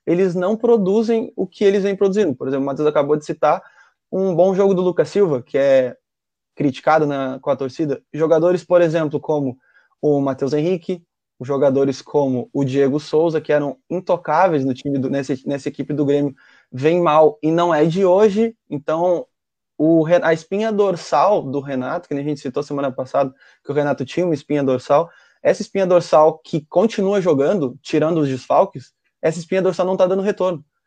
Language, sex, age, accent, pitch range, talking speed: Portuguese, male, 20-39, Brazilian, 145-190 Hz, 185 wpm